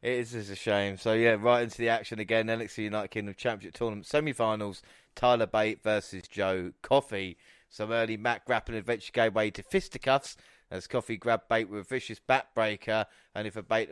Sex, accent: male, British